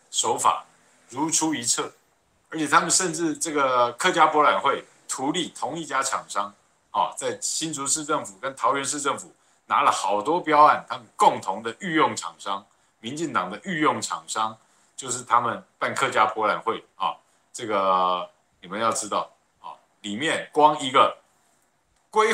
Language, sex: Chinese, male